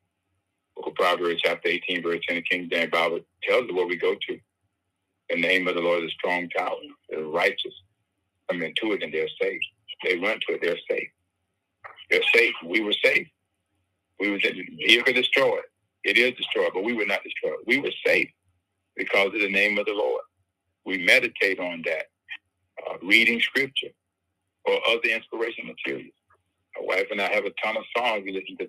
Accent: American